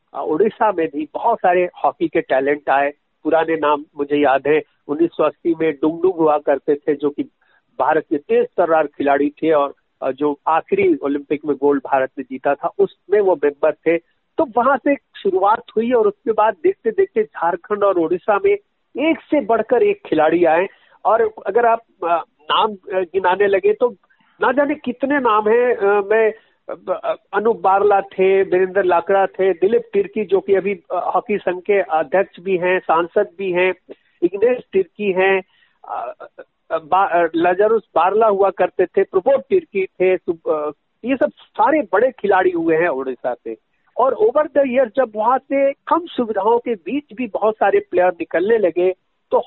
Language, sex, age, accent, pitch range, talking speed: Hindi, male, 50-69, native, 165-275 Hz, 165 wpm